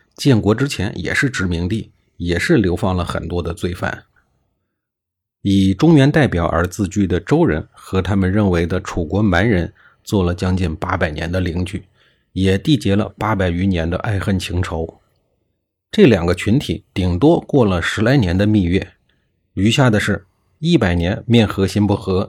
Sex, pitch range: male, 90-110 Hz